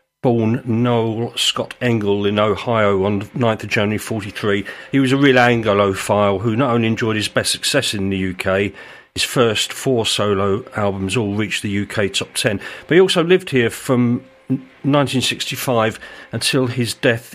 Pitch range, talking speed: 105-130 Hz, 165 wpm